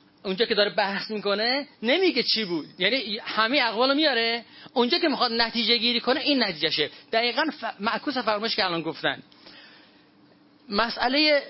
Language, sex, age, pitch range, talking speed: Persian, male, 30-49, 210-255 Hz, 145 wpm